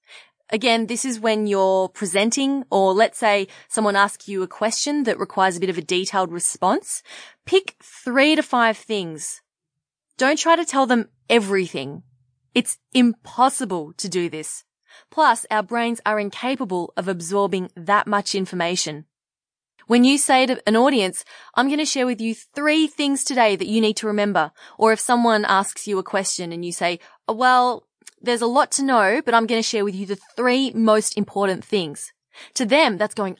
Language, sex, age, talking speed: English, female, 20-39, 180 wpm